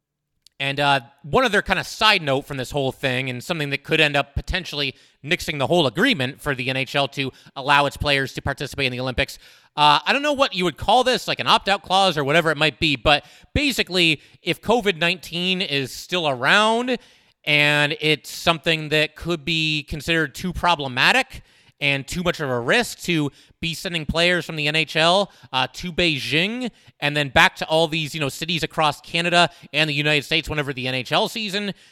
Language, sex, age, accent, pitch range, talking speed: English, male, 30-49, American, 140-175 Hz, 195 wpm